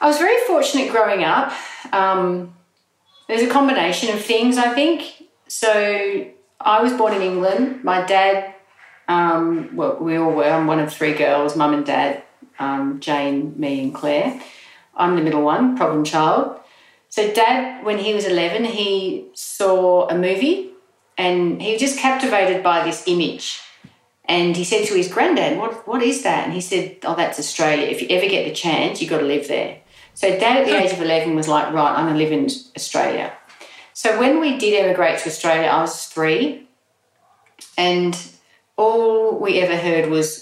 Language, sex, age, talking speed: English, female, 40-59, 185 wpm